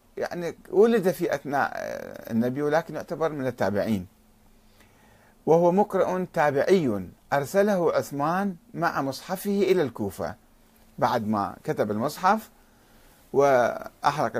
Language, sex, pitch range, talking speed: Arabic, male, 115-185 Hz, 95 wpm